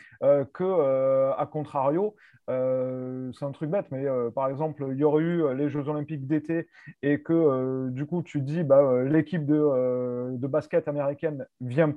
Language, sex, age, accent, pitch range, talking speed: French, male, 30-49, French, 135-165 Hz, 190 wpm